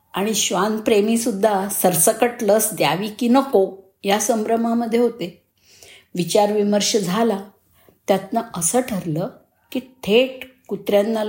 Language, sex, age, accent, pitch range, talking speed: Marathi, female, 50-69, native, 190-245 Hz, 105 wpm